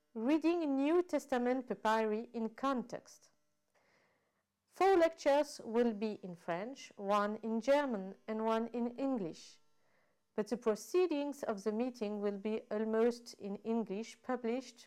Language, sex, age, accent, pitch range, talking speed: French, female, 40-59, French, 215-275 Hz, 125 wpm